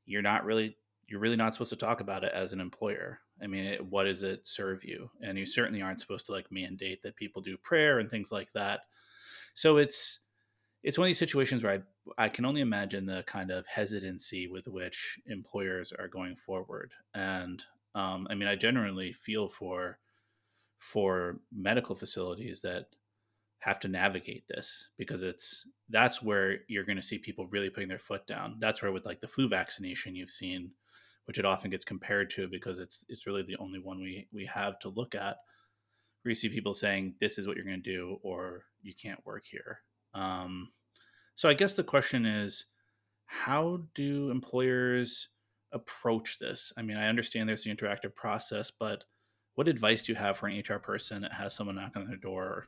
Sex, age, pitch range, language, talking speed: male, 20-39, 95-115 Hz, English, 195 wpm